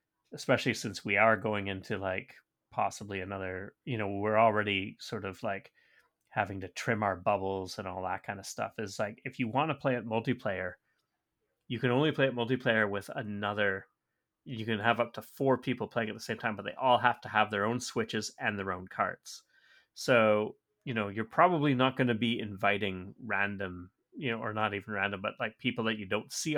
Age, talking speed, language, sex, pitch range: 30-49, 210 wpm, English, male, 105-125 Hz